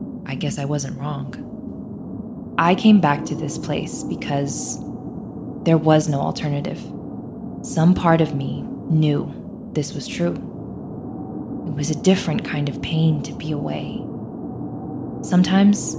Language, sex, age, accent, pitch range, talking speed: English, female, 20-39, American, 155-190 Hz, 130 wpm